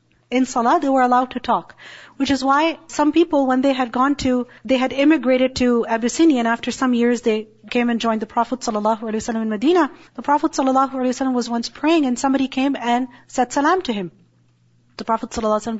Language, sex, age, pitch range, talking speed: English, female, 40-59, 225-280 Hz, 200 wpm